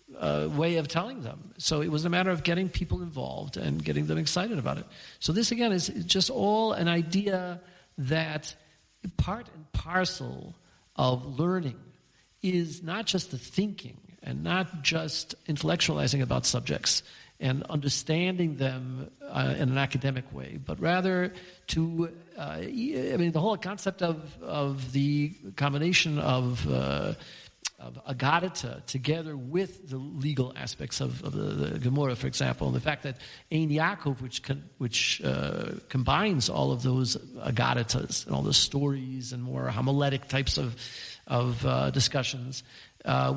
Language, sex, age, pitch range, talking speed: English, male, 50-69, 125-170 Hz, 150 wpm